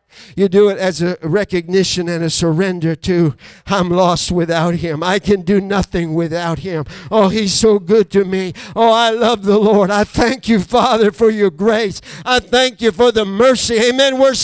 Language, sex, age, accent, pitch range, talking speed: English, male, 50-69, American, 175-230 Hz, 190 wpm